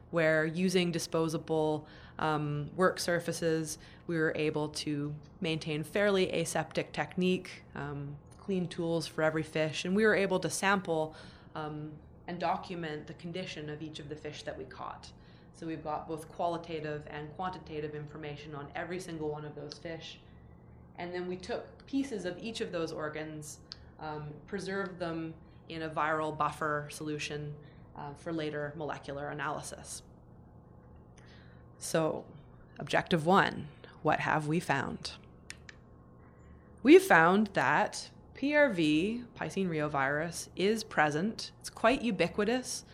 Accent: American